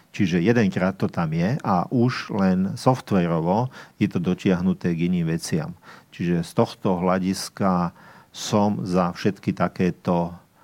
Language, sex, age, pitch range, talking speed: Slovak, male, 50-69, 90-120 Hz, 130 wpm